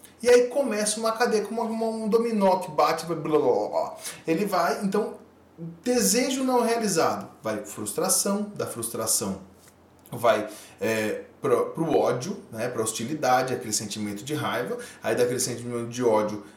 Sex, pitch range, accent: male, 130-200 Hz, Brazilian